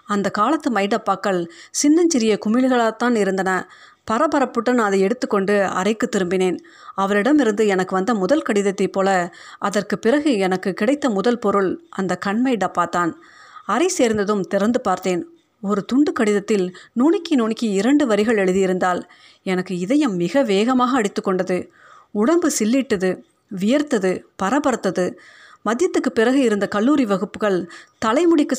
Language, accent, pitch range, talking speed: Tamil, native, 195-255 Hz, 110 wpm